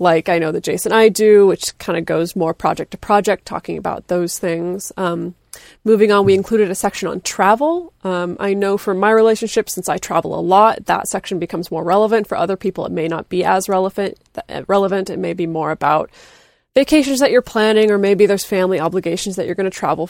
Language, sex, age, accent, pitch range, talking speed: English, female, 20-39, American, 180-225 Hz, 220 wpm